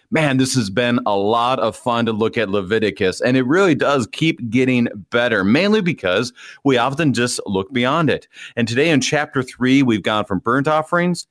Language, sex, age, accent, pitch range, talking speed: English, male, 30-49, American, 105-140 Hz, 195 wpm